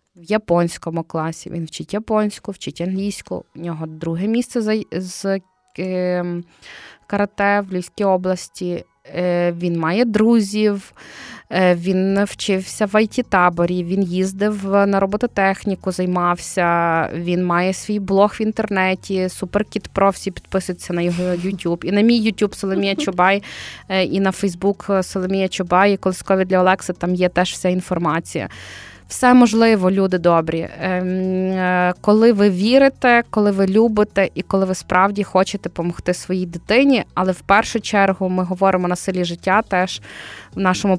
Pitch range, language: 180-205 Hz, Ukrainian